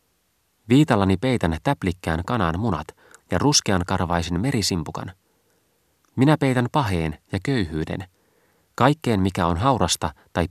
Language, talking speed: Finnish, 110 wpm